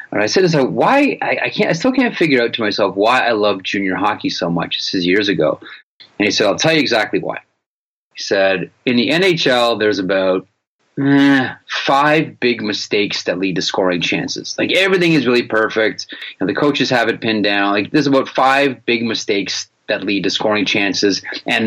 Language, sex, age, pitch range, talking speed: English, male, 30-49, 110-145 Hz, 200 wpm